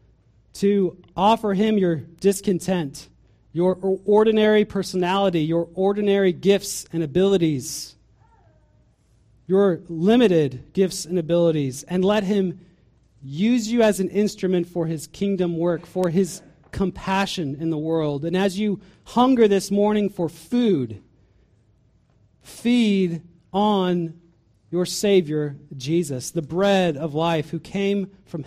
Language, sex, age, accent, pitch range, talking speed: English, male, 30-49, American, 135-195 Hz, 120 wpm